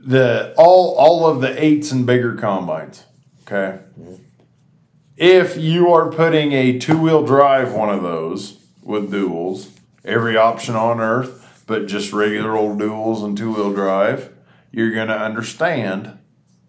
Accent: American